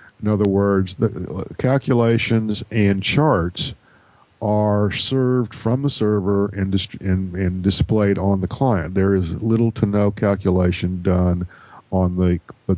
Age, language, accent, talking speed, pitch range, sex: 50-69, English, American, 140 wpm, 95-115 Hz, male